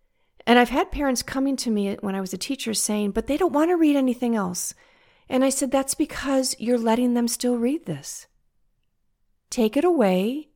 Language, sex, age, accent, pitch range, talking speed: English, female, 40-59, American, 195-265 Hz, 200 wpm